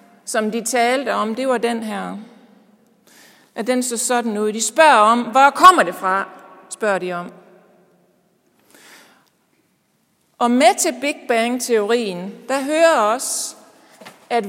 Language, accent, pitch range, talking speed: Danish, native, 215-295 Hz, 135 wpm